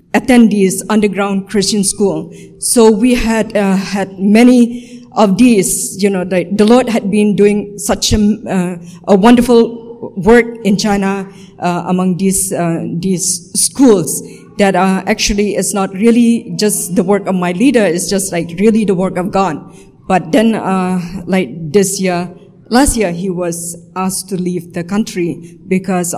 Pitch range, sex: 180-215 Hz, female